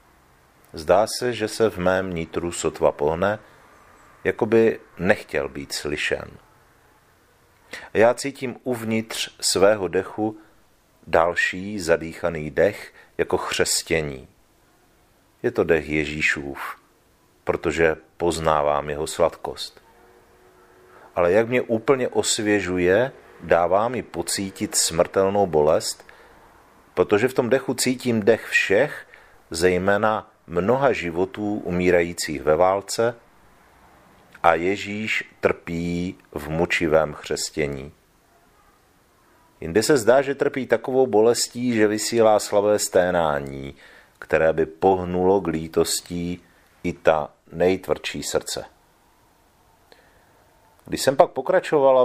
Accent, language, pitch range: native, Czech, 85-115 Hz